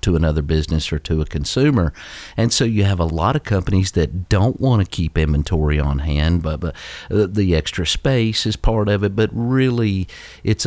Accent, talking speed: American, 195 wpm